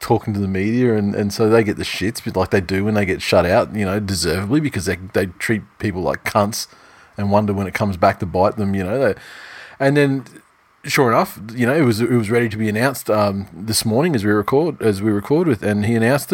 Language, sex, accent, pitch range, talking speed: English, male, Australian, 100-115 Hz, 255 wpm